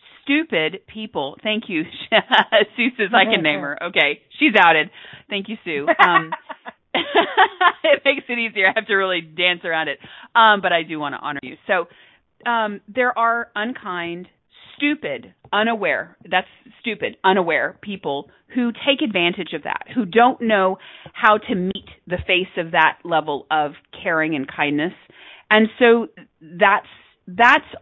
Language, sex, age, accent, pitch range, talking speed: English, female, 40-59, American, 185-240 Hz, 155 wpm